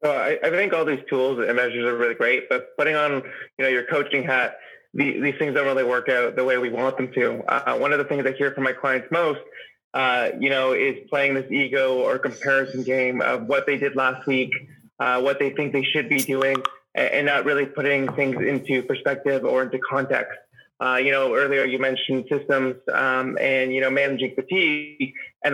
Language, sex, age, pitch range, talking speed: English, male, 20-39, 130-145 Hz, 220 wpm